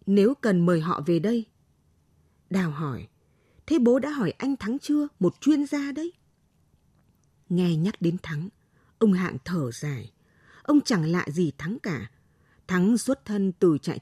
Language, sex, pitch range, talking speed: Vietnamese, female, 145-210 Hz, 165 wpm